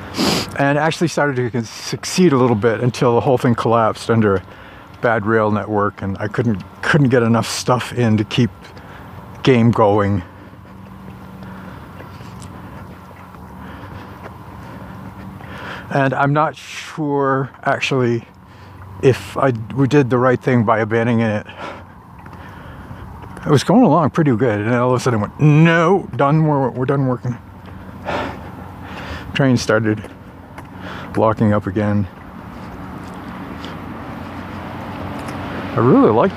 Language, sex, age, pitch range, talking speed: English, male, 60-79, 95-125 Hz, 115 wpm